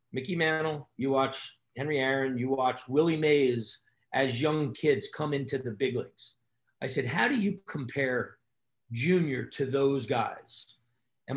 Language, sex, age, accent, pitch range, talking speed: English, male, 40-59, American, 125-155 Hz, 155 wpm